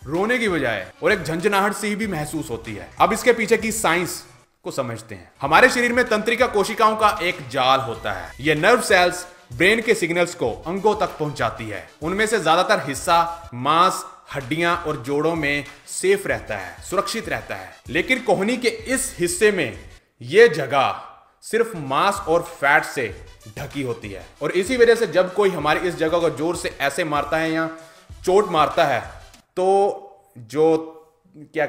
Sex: male